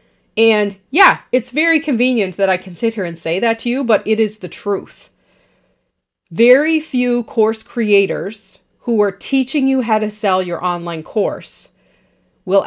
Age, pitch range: 30-49, 190-240 Hz